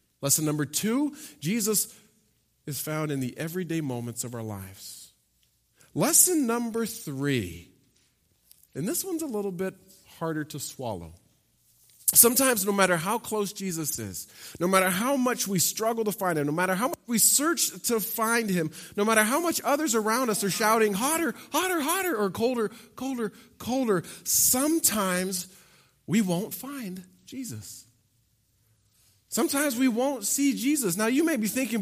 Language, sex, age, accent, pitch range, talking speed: English, male, 40-59, American, 140-235 Hz, 155 wpm